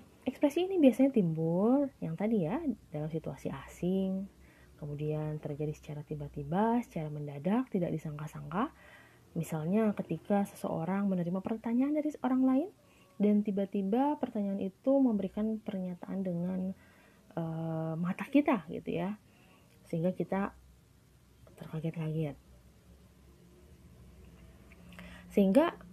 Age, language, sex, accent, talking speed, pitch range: 20-39, Indonesian, female, native, 95 wpm, 155-250 Hz